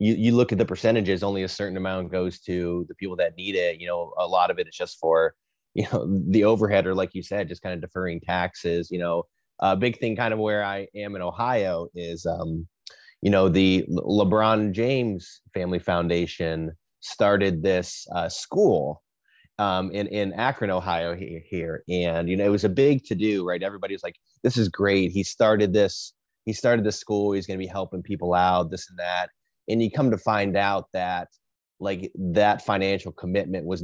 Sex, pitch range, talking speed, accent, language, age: male, 90-105 Hz, 205 wpm, American, English, 30-49